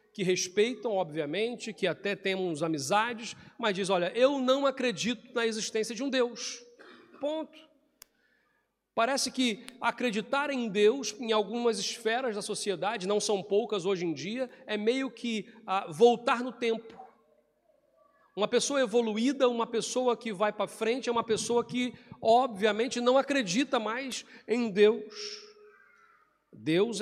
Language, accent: Portuguese, Brazilian